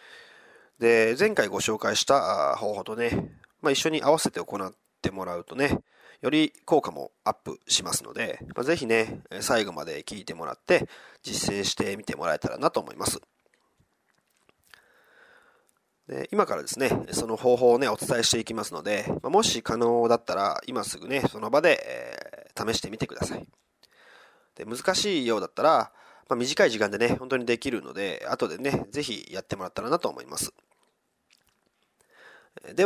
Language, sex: Japanese, male